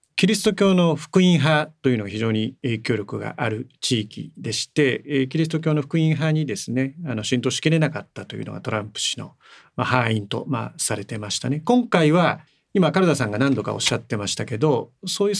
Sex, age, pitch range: male, 40-59, 120-180 Hz